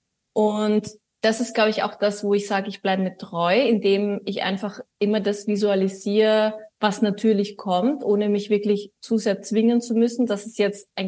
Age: 20-39